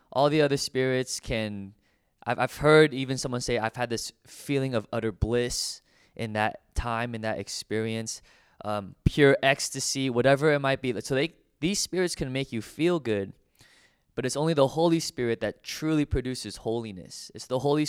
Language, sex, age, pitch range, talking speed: English, male, 20-39, 110-140 Hz, 175 wpm